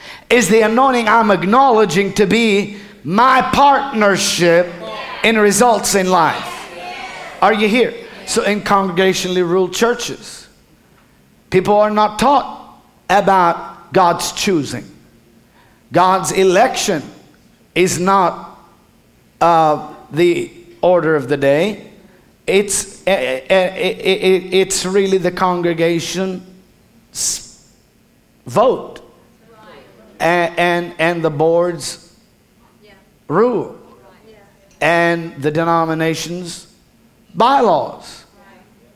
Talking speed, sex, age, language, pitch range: 80 wpm, male, 50-69, English, 175-210 Hz